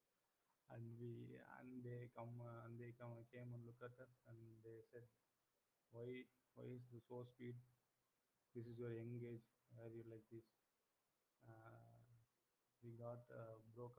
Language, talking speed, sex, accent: English, 160 wpm, male, Indian